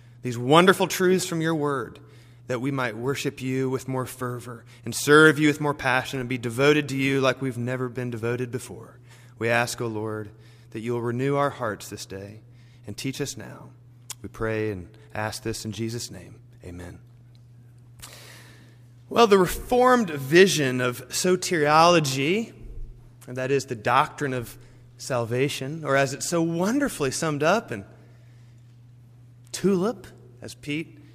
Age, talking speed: 30-49, 150 wpm